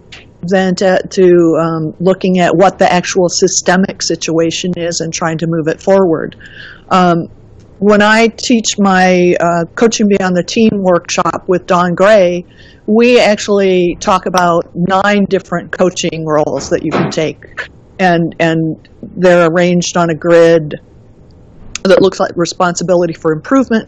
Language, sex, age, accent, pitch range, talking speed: English, female, 50-69, American, 170-200 Hz, 145 wpm